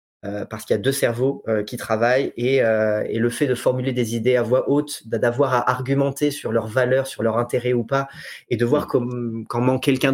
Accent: French